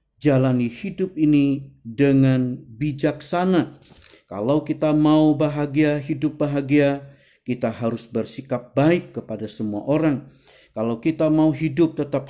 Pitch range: 115-145 Hz